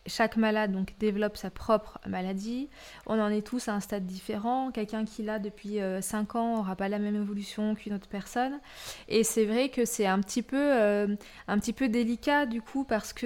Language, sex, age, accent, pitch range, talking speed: French, female, 20-39, French, 205-240 Hz, 210 wpm